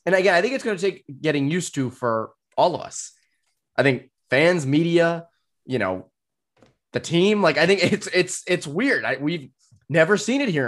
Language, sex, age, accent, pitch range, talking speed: English, male, 20-39, American, 110-155 Hz, 200 wpm